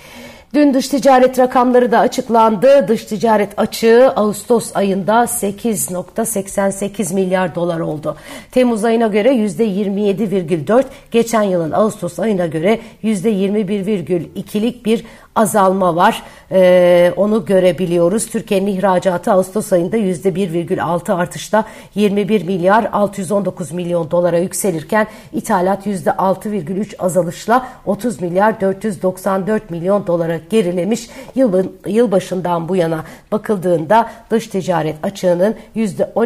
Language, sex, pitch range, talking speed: Turkish, female, 180-225 Hz, 105 wpm